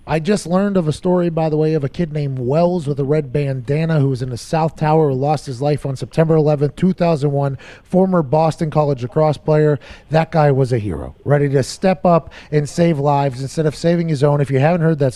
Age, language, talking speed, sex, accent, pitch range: 30-49, English, 235 wpm, male, American, 140-195 Hz